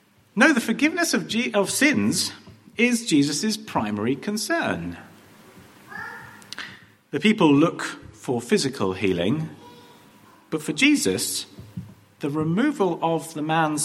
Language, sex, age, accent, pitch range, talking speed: English, male, 40-59, British, 115-175 Hz, 105 wpm